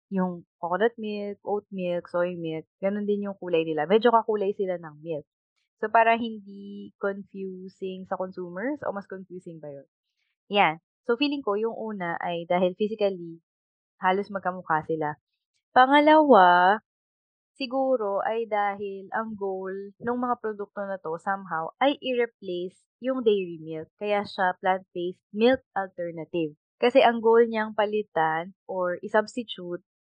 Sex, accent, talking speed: female, native, 140 wpm